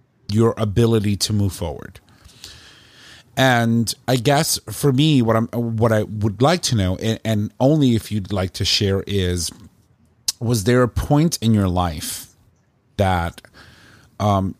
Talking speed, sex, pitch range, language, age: 150 wpm, male, 100-120 Hz, English, 40-59